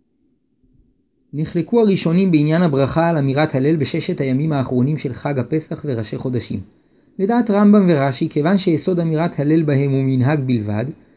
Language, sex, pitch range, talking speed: Hebrew, male, 135-180 Hz, 140 wpm